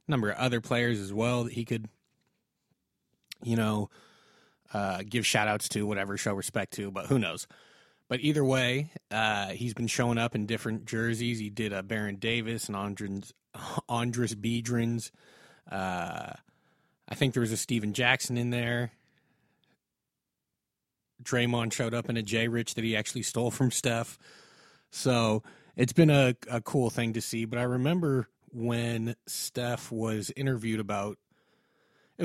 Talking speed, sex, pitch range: 150 wpm, male, 110-120 Hz